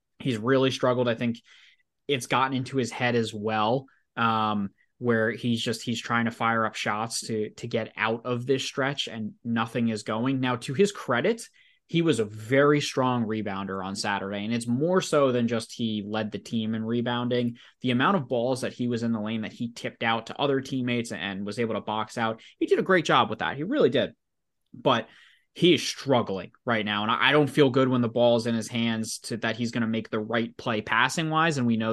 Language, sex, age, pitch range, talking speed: English, male, 20-39, 110-135 Hz, 230 wpm